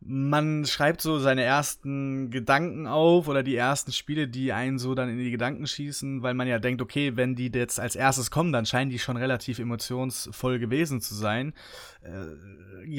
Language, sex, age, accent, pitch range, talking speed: German, male, 20-39, German, 115-135 Hz, 185 wpm